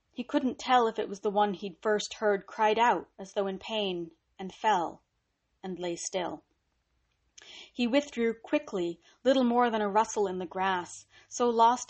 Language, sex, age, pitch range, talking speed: English, female, 30-49, 195-245 Hz, 175 wpm